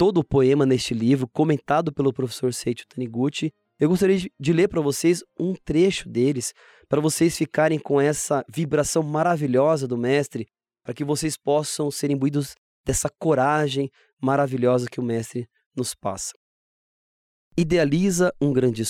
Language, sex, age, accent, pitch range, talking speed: Portuguese, male, 20-39, Brazilian, 120-160 Hz, 145 wpm